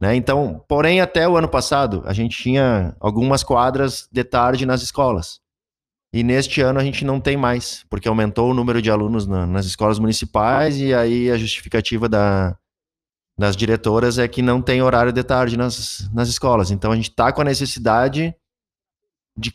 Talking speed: 180 wpm